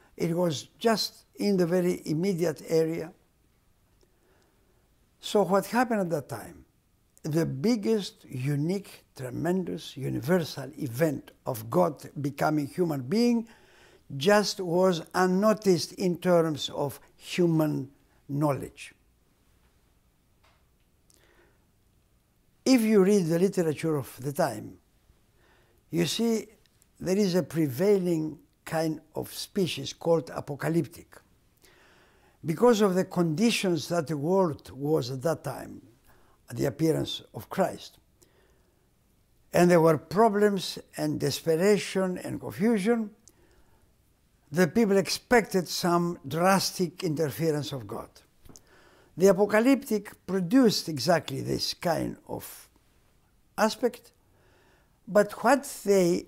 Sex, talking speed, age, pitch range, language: male, 100 wpm, 60-79, 150-200 Hz, English